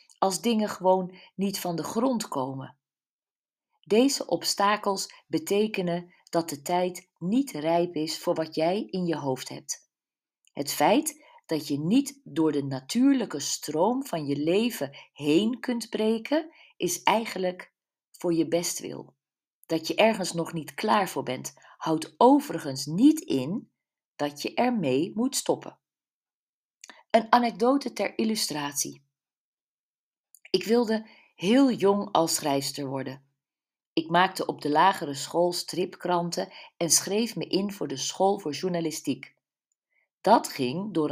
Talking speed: 135 wpm